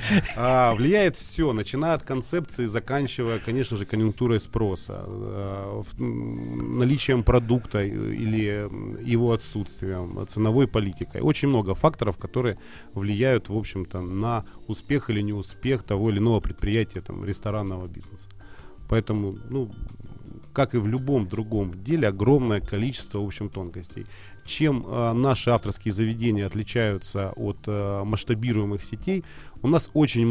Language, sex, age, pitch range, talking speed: Russian, male, 30-49, 100-120 Hz, 130 wpm